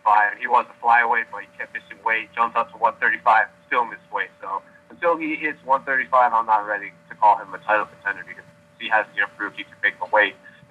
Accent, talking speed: American, 230 wpm